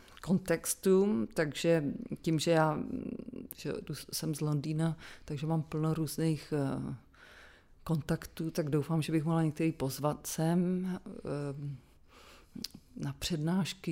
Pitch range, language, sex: 155-185 Hz, Czech, female